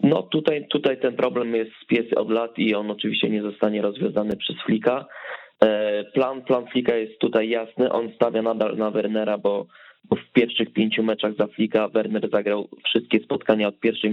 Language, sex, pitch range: Polish, male, 105-115 Hz